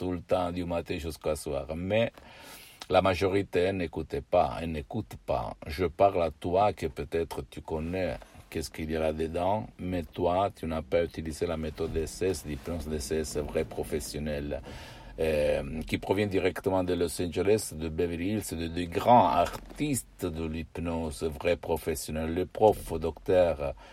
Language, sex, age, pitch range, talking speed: Italian, male, 60-79, 80-90 Hz, 155 wpm